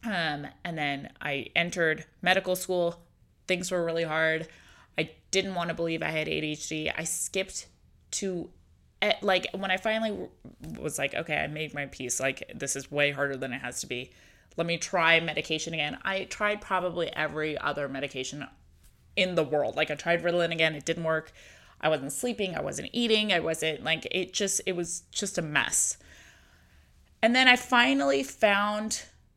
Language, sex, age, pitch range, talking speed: English, female, 20-39, 155-190 Hz, 175 wpm